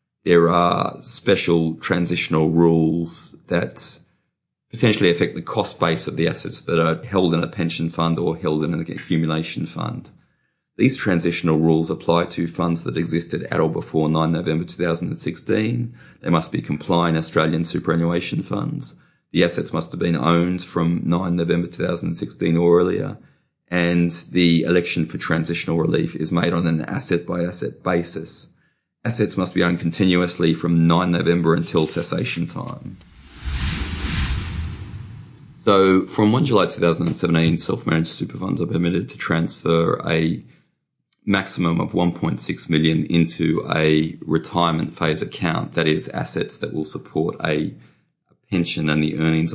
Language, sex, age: English, male, 30-49